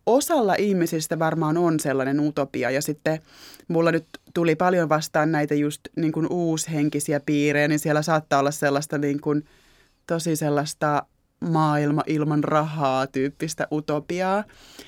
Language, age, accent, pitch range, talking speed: Finnish, 20-39, native, 150-180 Hz, 135 wpm